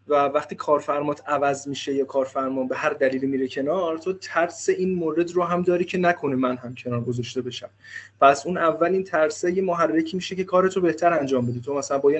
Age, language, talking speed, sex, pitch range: 20-39, Persian, 220 wpm, male, 140-175 Hz